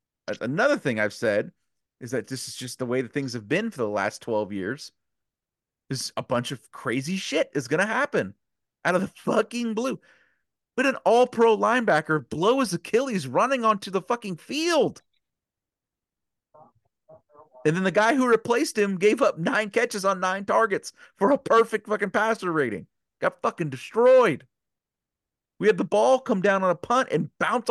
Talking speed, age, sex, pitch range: 180 wpm, 30-49, male, 150-220 Hz